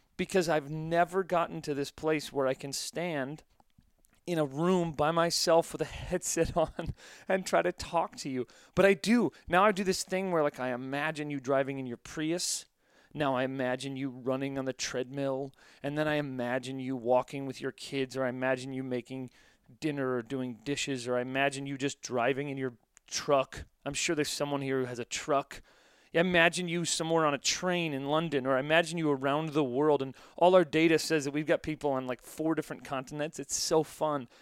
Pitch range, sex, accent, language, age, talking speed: 135-165 Hz, male, American, English, 30-49, 205 wpm